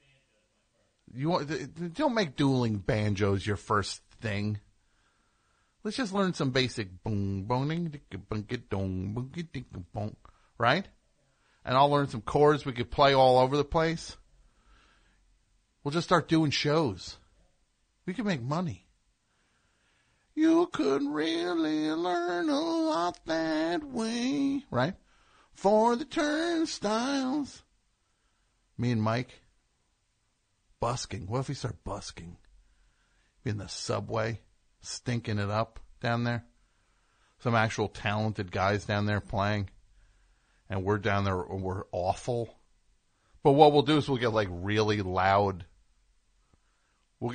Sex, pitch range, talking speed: male, 100-150 Hz, 120 wpm